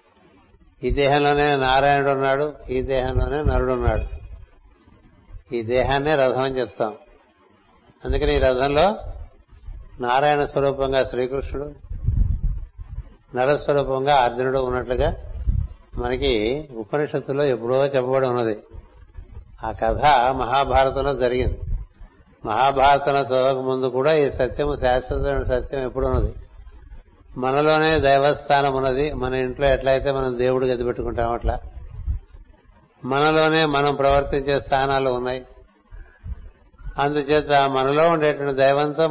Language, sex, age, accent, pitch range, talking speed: Telugu, male, 60-79, native, 110-140 Hz, 90 wpm